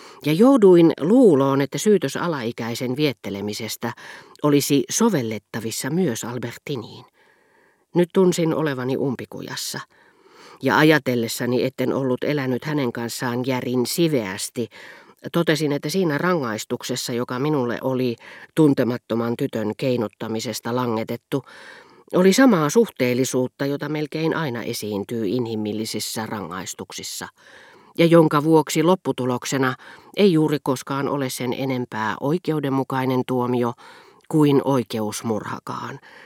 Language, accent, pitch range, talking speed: Finnish, native, 120-155 Hz, 95 wpm